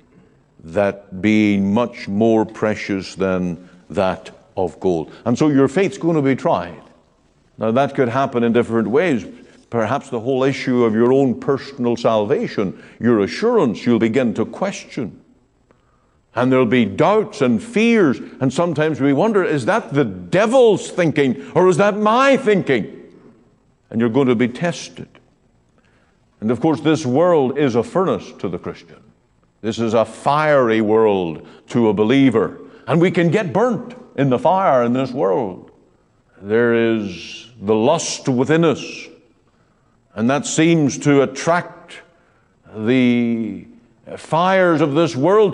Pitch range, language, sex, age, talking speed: 115-175 Hz, English, male, 50-69, 145 wpm